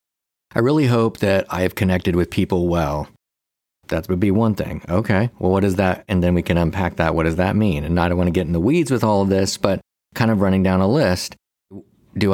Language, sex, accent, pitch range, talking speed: English, male, American, 90-105 Hz, 250 wpm